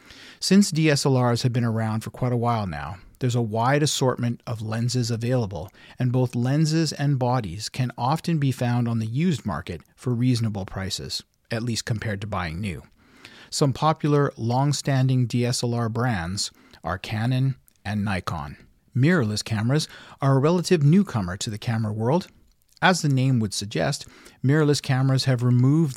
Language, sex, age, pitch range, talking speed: English, male, 40-59, 110-135 Hz, 155 wpm